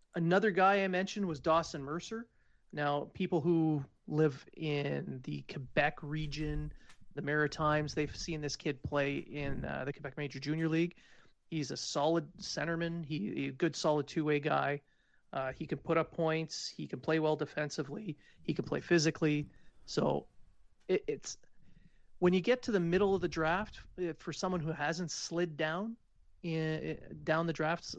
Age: 30-49